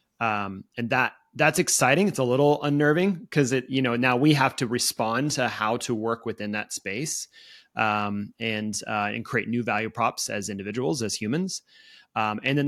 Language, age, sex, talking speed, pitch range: English, 30-49, male, 190 wpm, 110-145 Hz